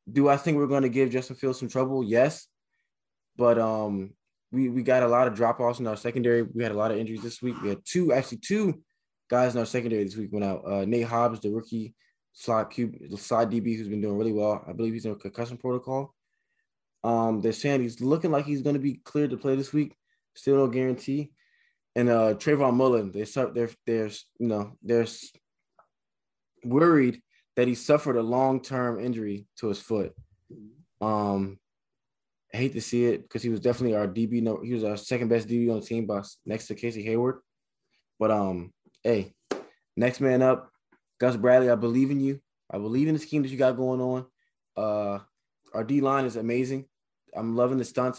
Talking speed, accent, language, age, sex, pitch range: 200 wpm, American, English, 20-39, male, 110-130 Hz